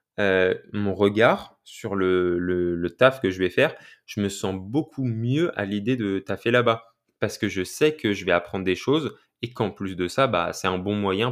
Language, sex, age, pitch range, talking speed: French, male, 20-39, 95-120 Hz, 225 wpm